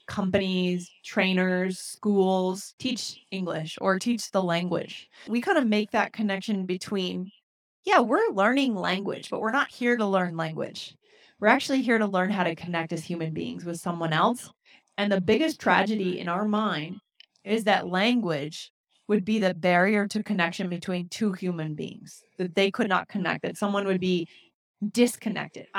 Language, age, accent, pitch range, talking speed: English, 20-39, American, 180-215 Hz, 165 wpm